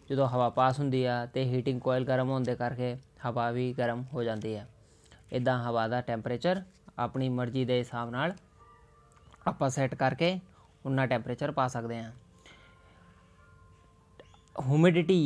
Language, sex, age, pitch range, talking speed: Punjabi, male, 20-39, 120-145 Hz, 140 wpm